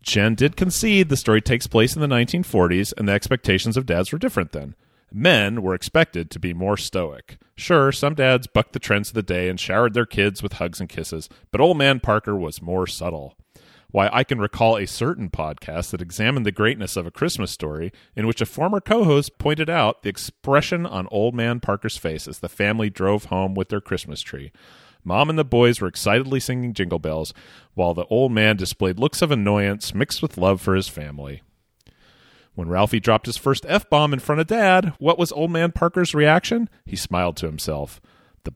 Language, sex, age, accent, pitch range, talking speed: English, male, 40-59, American, 95-145 Hz, 205 wpm